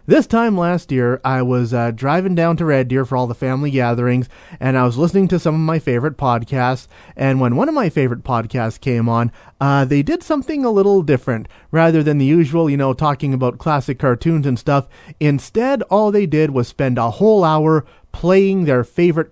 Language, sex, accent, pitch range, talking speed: English, male, American, 130-185 Hz, 210 wpm